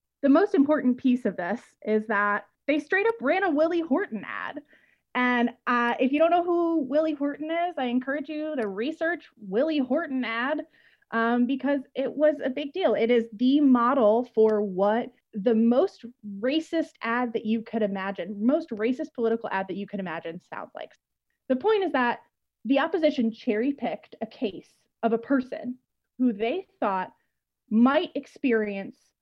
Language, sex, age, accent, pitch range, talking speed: English, female, 20-39, American, 215-290 Hz, 170 wpm